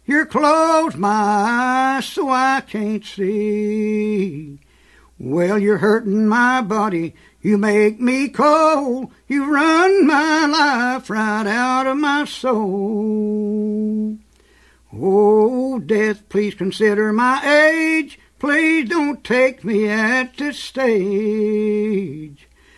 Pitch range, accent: 210-265 Hz, American